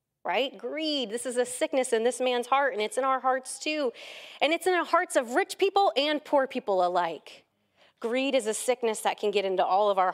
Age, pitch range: 30-49, 205-290 Hz